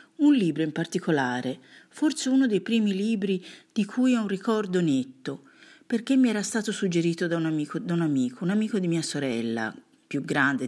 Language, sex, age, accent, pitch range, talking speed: Italian, female, 50-69, native, 155-235 Hz, 175 wpm